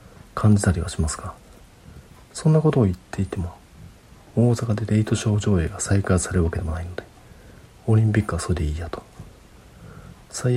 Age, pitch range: 40-59, 85-120 Hz